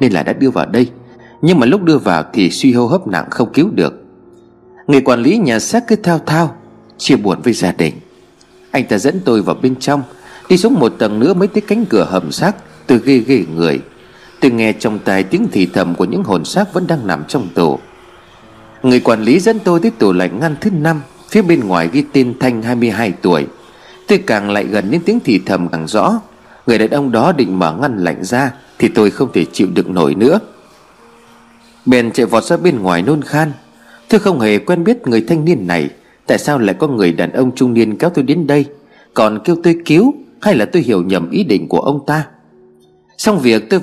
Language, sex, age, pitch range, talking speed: Vietnamese, male, 30-49, 110-175 Hz, 225 wpm